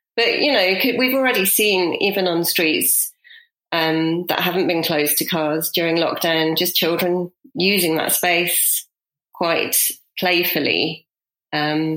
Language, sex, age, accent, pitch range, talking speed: English, female, 30-49, British, 160-190 Hz, 130 wpm